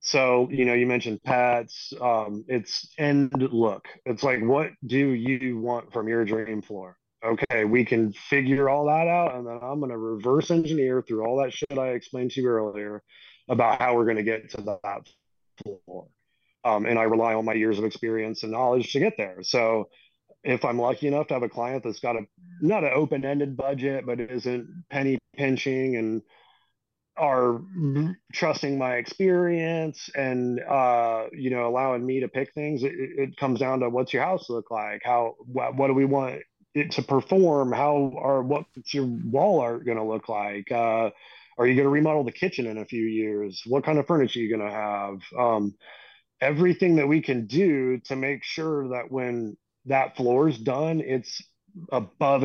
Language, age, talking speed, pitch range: English, 30-49, 185 wpm, 115-140 Hz